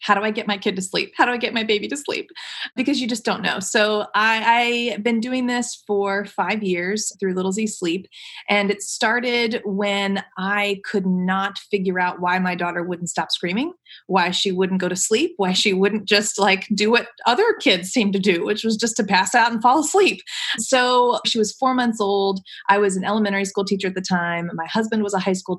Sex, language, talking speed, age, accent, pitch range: female, English, 225 wpm, 30-49, American, 190-240 Hz